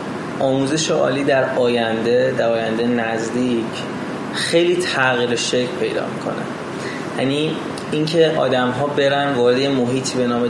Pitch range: 115-140 Hz